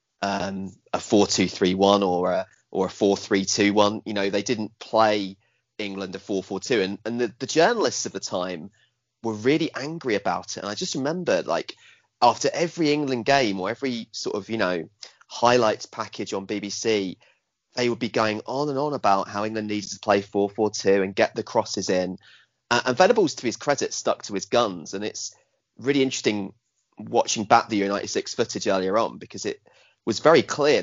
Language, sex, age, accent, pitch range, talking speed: English, male, 30-49, British, 95-115 Hz, 185 wpm